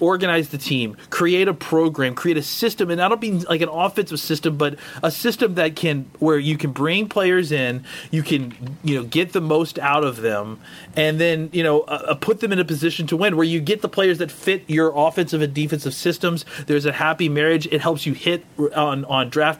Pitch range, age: 145-175 Hz, 30-49